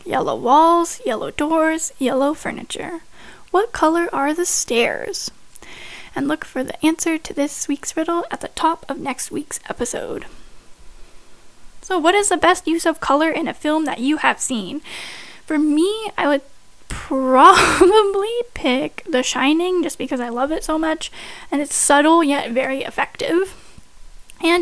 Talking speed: 155 wpm